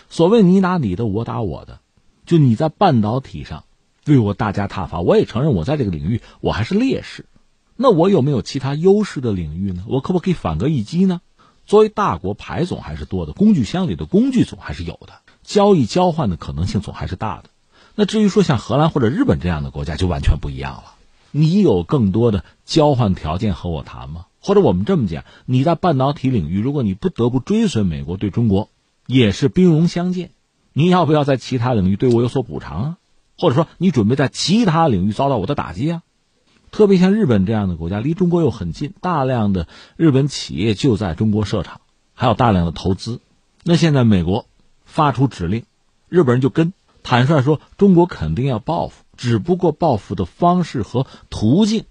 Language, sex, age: Chinese, male, 50-69